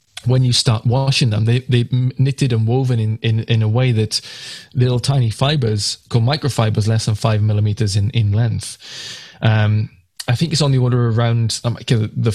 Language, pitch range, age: English, 110-130 Hz, 20-39